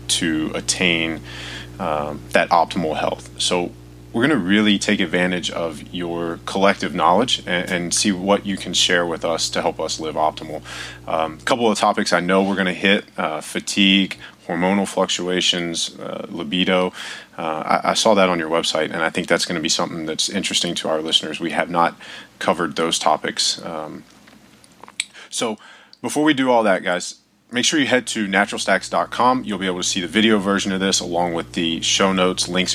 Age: 30-49